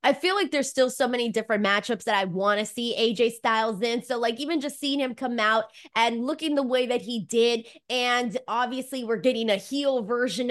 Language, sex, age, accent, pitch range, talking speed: English, female, 20-39, American, 215-270 Hz, 225 wpm